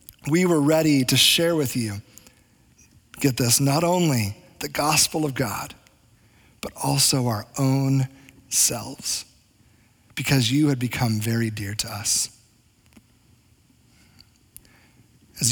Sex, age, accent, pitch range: male, 40-59, American, 125-190 Hz